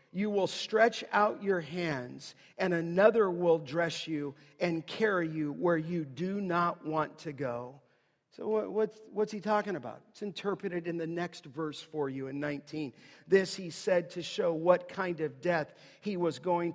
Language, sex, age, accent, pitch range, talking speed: English, male, 50-69, American, 160-210 Hz, 175 wpm